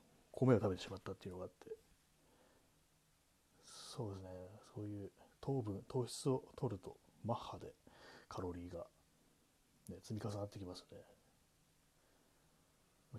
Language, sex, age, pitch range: Japanese, male, 30-49, 95-130 Hz